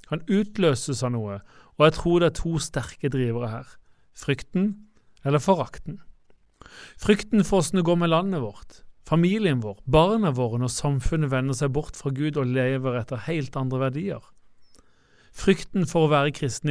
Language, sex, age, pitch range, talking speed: English, male, 40-59, 125-155 Hz, 165 wpm